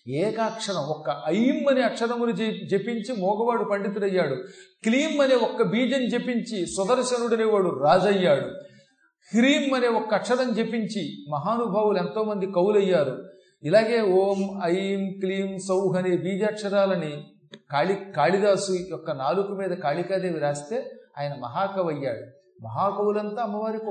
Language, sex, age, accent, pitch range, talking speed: Telugu, male, 40-59, native, 180-220 Hz, 105 wpm